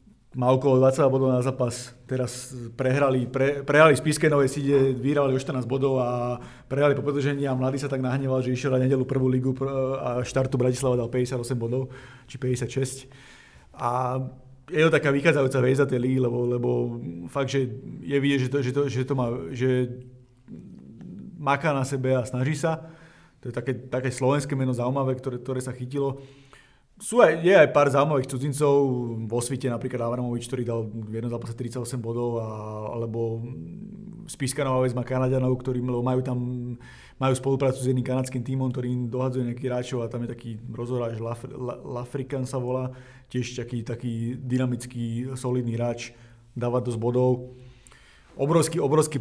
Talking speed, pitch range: 165 wpm, 125-135 Hz